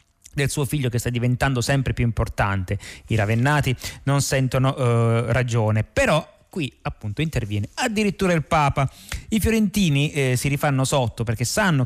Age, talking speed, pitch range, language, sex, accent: 30-49, 150 wpm, 115-145 Hz, Italian, male, native